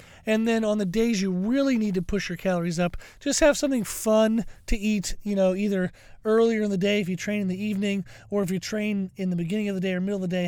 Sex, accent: male, American